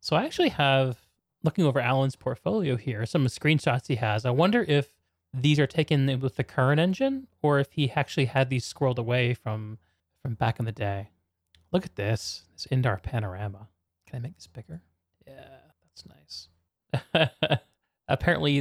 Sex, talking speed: male, 170 wpm